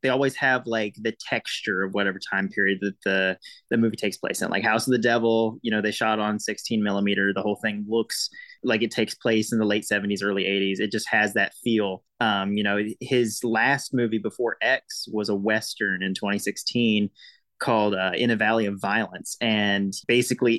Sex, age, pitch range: male, 20-39, 105-125 Hz